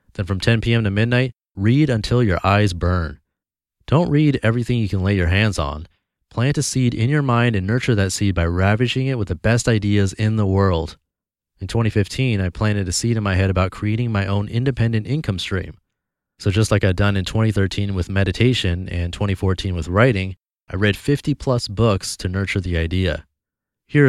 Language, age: English, 30-49